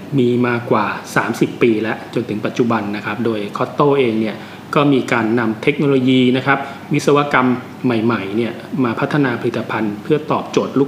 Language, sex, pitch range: Thai, male, 115-140 Hz